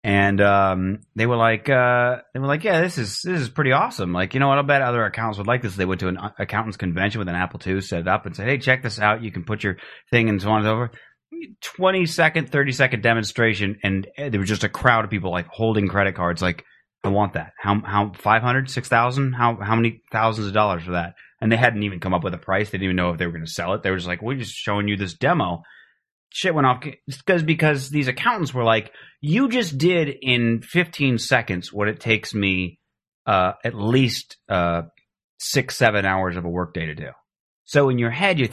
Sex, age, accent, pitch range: male, 30-49, American, 100-135 Hz